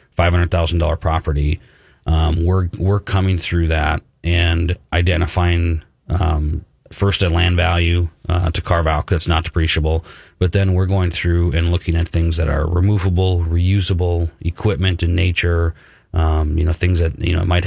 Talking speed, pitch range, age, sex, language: 170 wpm, 80-90 Hz, 30-49, male, English